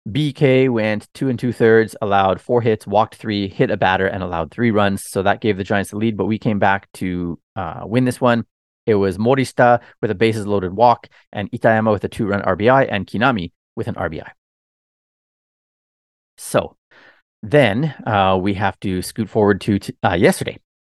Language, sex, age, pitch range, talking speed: English, male, 30-49, 100-125 Hz, 180 wpm